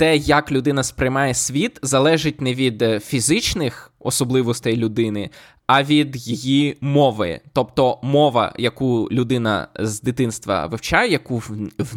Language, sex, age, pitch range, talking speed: Ukrainian, male, 20-39, 120-150 Hz, 120 wpm